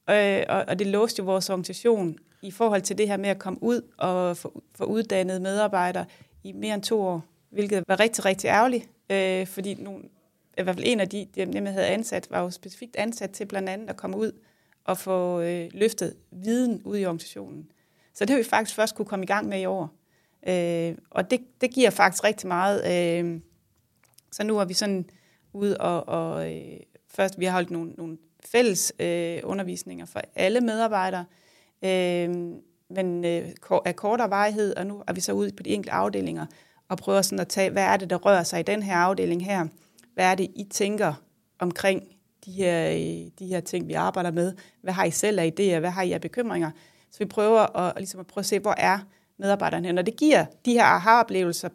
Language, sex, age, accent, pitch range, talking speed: Danish, female, 30-49, native, 175-210 Hz, 195 wpm